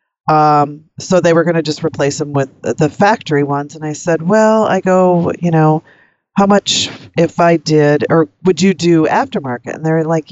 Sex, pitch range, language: female, 145-175 Hz, English